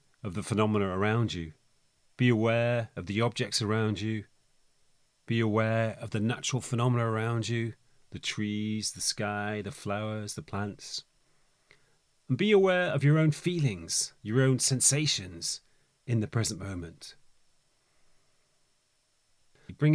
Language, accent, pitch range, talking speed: English, British, 105-145 Hz, 130 wpm